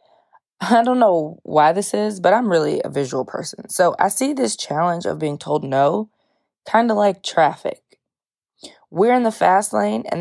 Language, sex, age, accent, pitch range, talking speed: English, female, 20-39, American, 160-210 Hz, 180 wpm